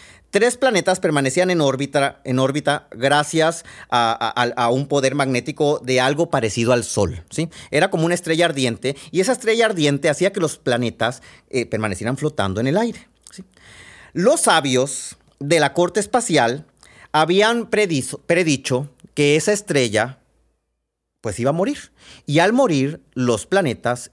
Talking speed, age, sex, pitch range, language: 140 wpm, 30-49, male, 120-180 Hz, Spanish